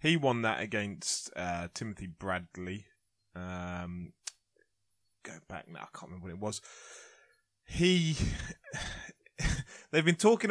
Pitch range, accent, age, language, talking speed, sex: 95-130 Hz, British, 20-39, English, 120 wpm, male